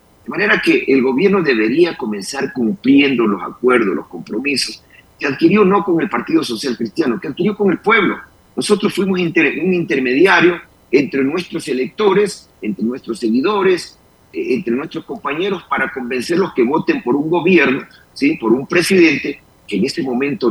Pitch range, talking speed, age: 140-200 Hz, 150 wpm, 40-59